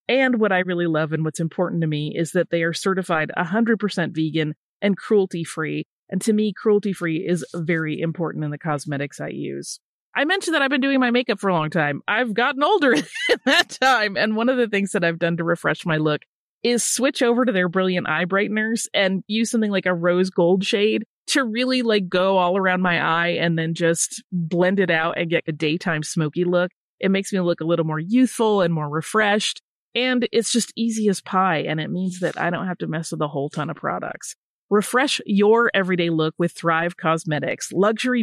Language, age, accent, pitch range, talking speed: English, 30-49, American, 165-220 Hz, 215 wpm